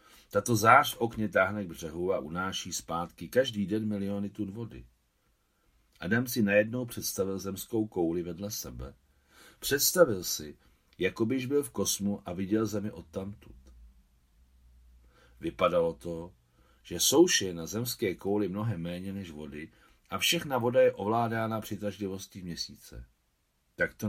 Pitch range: 80-105 Hz